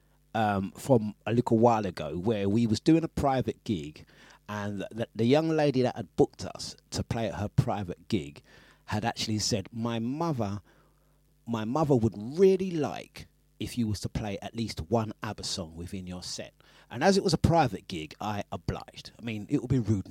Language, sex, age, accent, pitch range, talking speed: English, male, 40-59, British, 105-140 Hz, 195 wpm